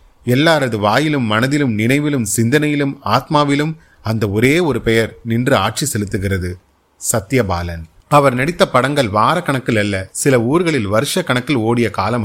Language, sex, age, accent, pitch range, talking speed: Tamil, male, 30-49, native, 105-140 Hz, 120 wpm